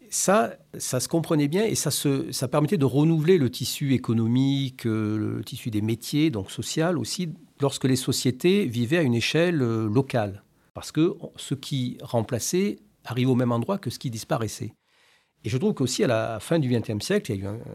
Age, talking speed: 50-69, 195 wpm